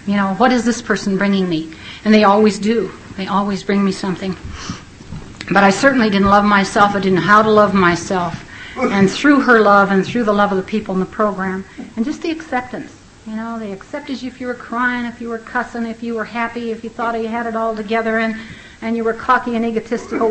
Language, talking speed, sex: English, 235 wpm, female